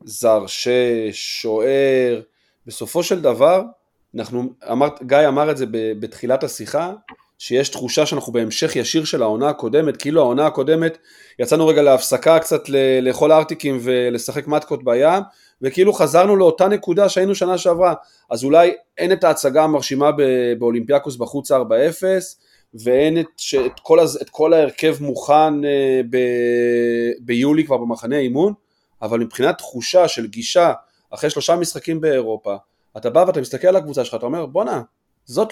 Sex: male